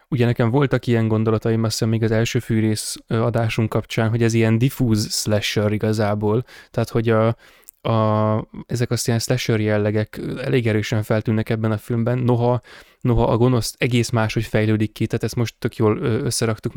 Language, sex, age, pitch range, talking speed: Hungarian, male, 20-39, 110-125 Hz, 175 wpm